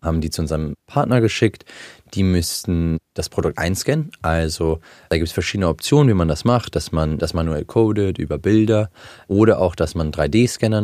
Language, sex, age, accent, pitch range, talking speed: German, male, 20-39, German, 80-105 Hz, 185 wpm